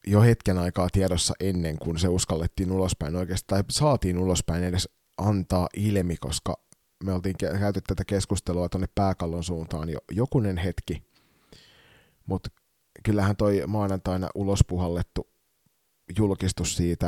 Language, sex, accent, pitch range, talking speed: Finnish, male, native, 85-100 Hz, 125 wpm